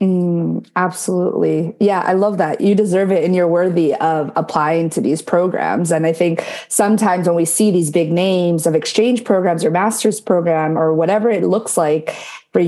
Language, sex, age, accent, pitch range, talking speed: English, female, 30-49, American, 165-215 Hz, 185 wpm